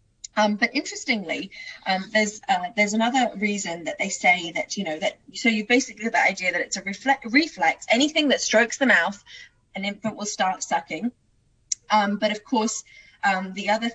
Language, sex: English, female